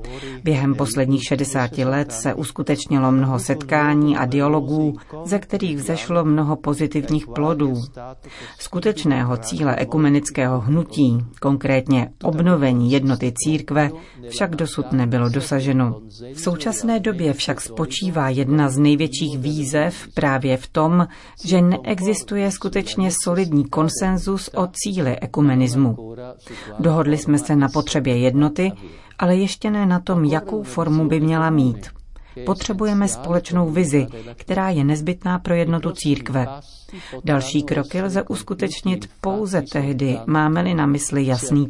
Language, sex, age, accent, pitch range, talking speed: Czech, female, 40-59, native, 135-175 Hz, 120 wpm